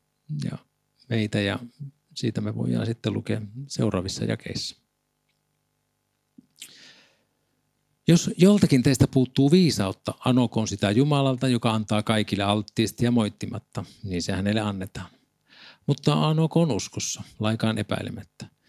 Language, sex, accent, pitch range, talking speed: Finnish, male, native, 100-125 Hz, 110 wpm